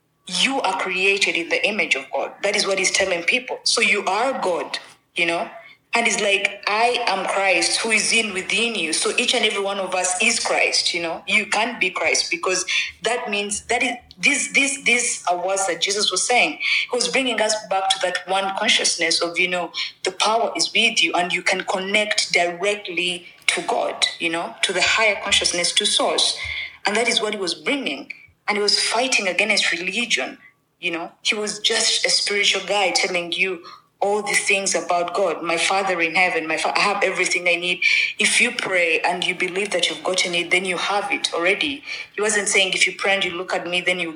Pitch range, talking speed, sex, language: 180-225 Hz, 215 wpm, female, English